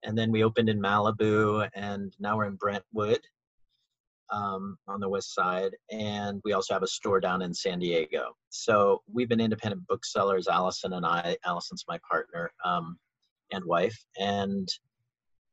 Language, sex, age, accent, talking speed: English, male, 40-59, American, 160 wpm